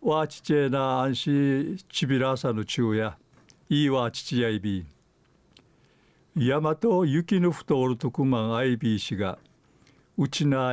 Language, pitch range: Japanese, 125-155 Hz